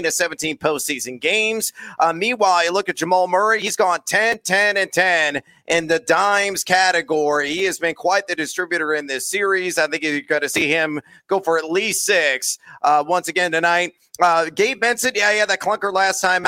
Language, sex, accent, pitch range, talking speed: English, male, American, 160-205 Hz, 205 wpm